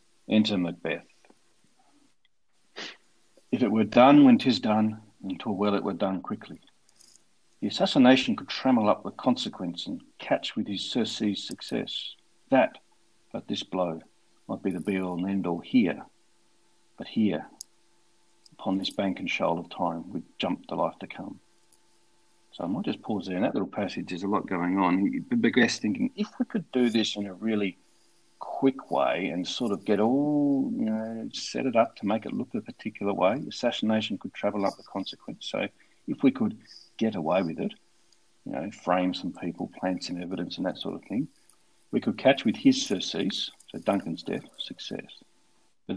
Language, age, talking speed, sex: English, 50-69, 180 wpm, male